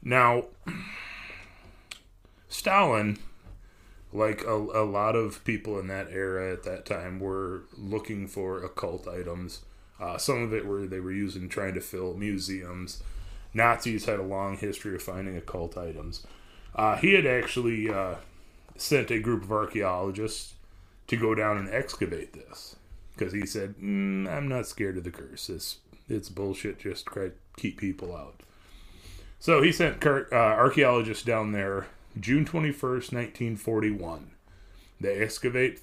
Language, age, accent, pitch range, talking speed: English, 30-49, American, 90-110 Hz, 140 wpm